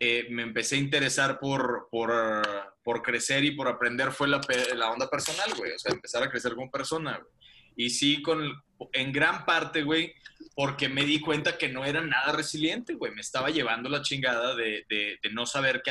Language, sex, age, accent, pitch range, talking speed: Spanish, male, 20-39, Mexican, 125-160 Hz, 210 wpm